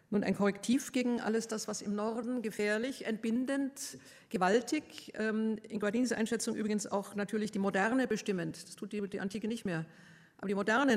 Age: 50-69